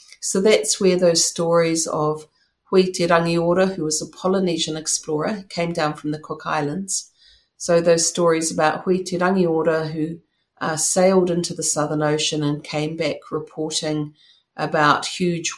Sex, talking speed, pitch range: female, 140 wpm, 150-180 Hz